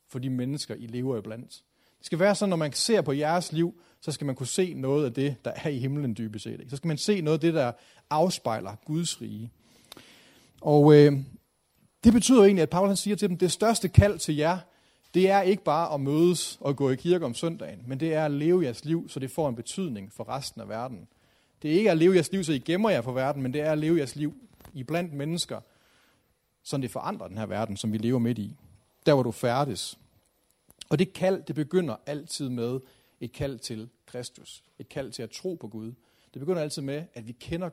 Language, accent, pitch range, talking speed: Danish, native, 130-170 Hz, 230 wpm